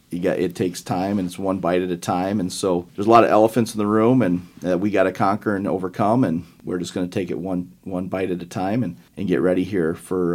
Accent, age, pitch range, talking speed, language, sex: American, 40-59, 85-100 Hz, 285 wpm, English, male